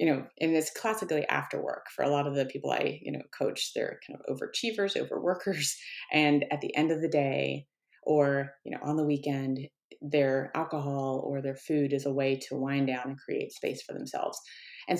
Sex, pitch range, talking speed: female, 140-175 Hz, 210 wpm